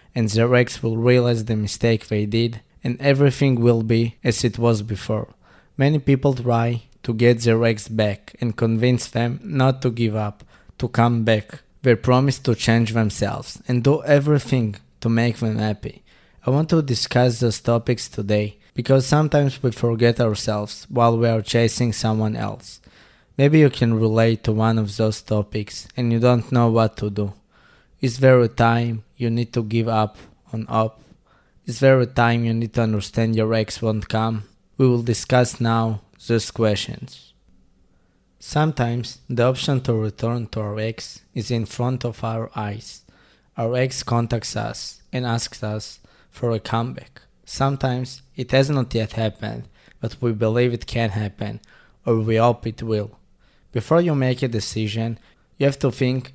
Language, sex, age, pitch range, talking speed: English, male, 20-39, 110-125 Hz, 170 wpm